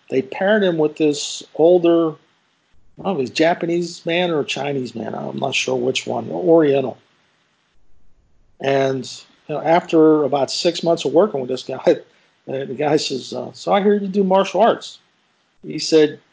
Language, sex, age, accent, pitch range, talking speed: English, male, 50-69, American, 135-175 Hz, 180 wpm